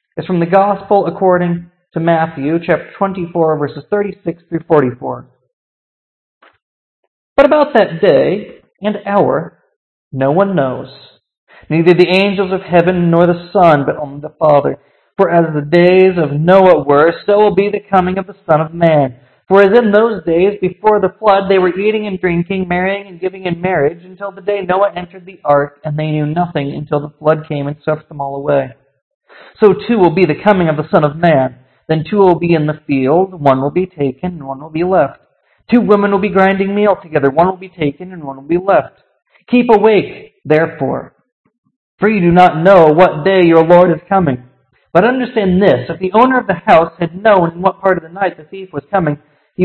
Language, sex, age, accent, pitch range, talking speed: English, male, 40-59, American, 150-195 Hz, 205 wpm